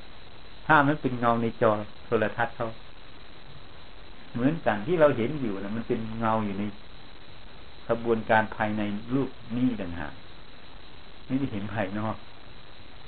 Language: Thai